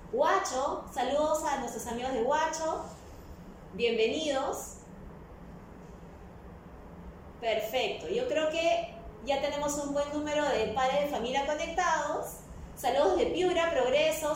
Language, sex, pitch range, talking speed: Spanish, female, 220-300 Hz, 110 wpm